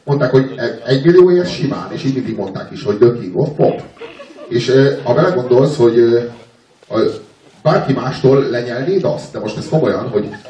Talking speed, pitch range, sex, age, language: 165 wpm, 120-155 Hz, male, 30-49, Hungarian